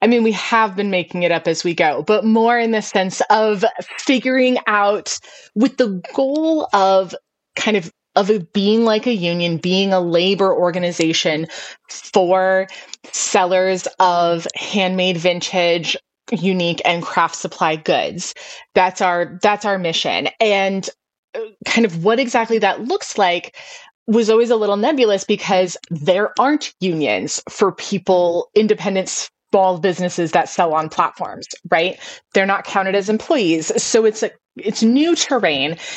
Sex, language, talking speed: female, English, 145 wpm